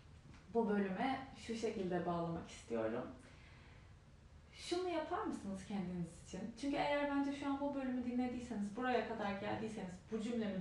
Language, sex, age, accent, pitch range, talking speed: Turkish, female, 30-49, native, 195-235 Hz, 135 wpm